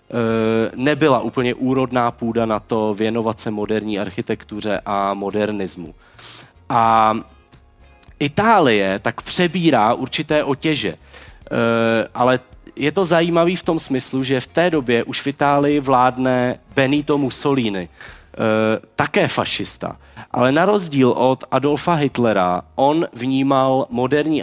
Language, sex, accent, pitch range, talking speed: Czech, male, native, 110-145 Hz, 115 wpm